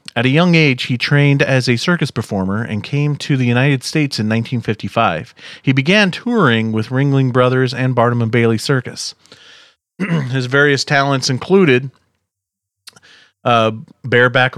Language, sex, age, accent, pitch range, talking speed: English, male, 40-59, American, 115-140 Hz, 135 wpm